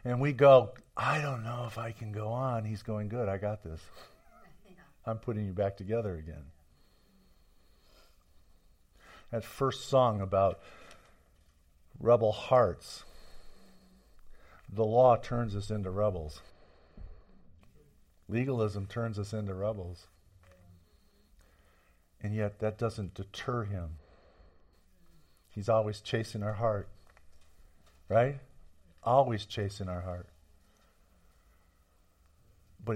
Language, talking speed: English, 105 wpm